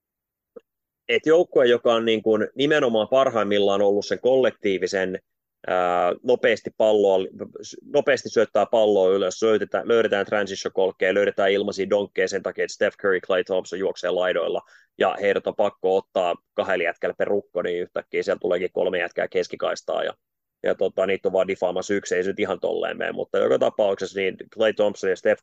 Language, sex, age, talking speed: Finnish, male, 30-49, 165 wpm